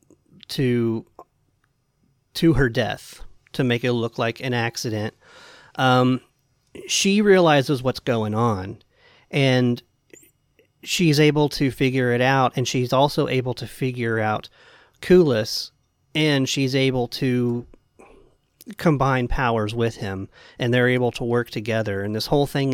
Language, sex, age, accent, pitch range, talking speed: English, male, 40-59, American, 120-145 Hz, 130 wpm